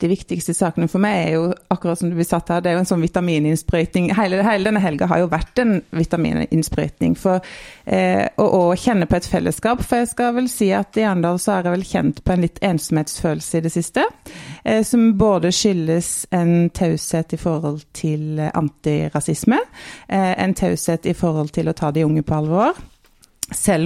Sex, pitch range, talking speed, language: female, 170-205 Hz, 195 wpm, English